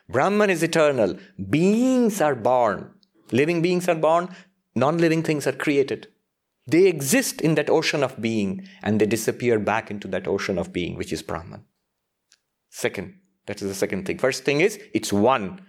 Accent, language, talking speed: Indian, English, 170 wpm